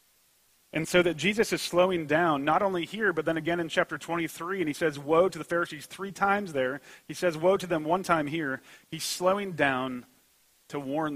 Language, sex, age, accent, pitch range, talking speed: English, male, 30-49, American, 125-165 Hz, 210 wpm